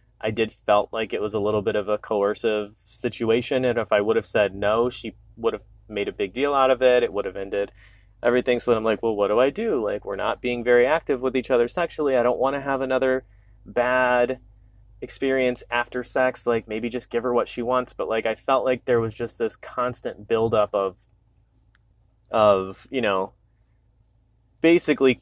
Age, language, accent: 30-49, English, American